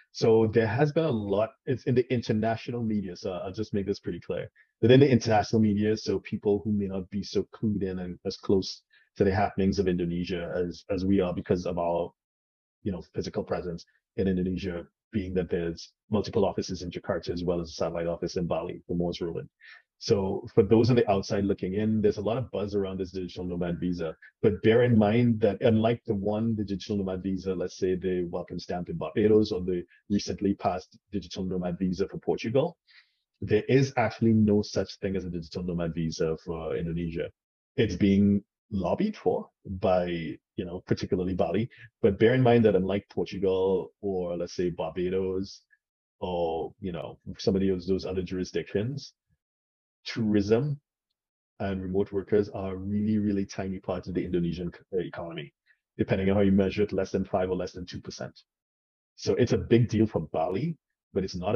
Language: English